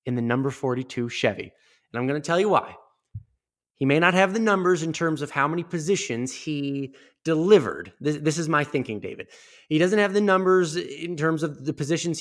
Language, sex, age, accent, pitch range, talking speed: English, male, 30-49, American, 130-170 Hz, 205 wpm